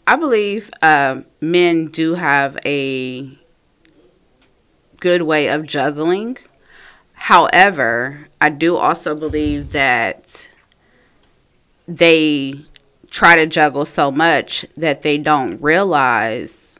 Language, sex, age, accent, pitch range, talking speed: English, female, 30-49, American, 140-170 Hz, 95 wpm